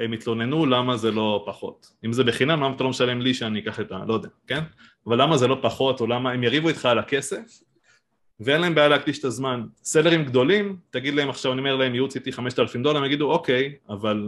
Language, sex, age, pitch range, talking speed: Hebrew, male, 20-39, 115-145 Hz, 225 wpm